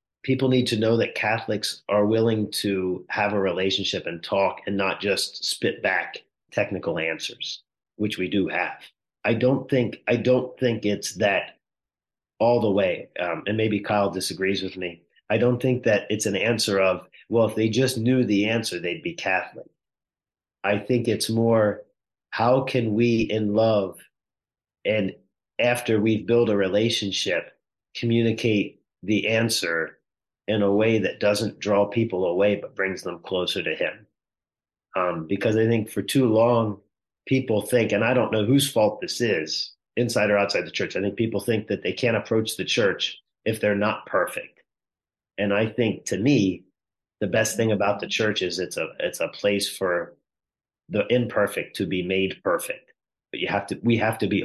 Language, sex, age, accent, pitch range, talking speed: English, male, 40-59, American, 100-115 Hz, 175 wpm